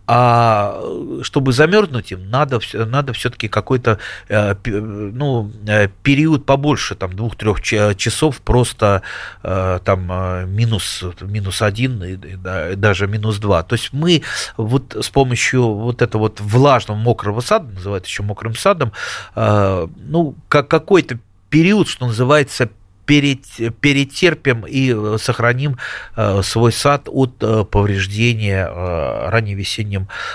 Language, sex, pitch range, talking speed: Russian, male, 95-130 Hz, 105 wpm